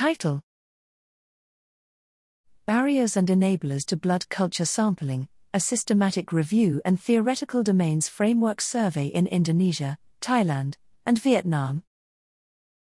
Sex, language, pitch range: female, English, 155-215 Hz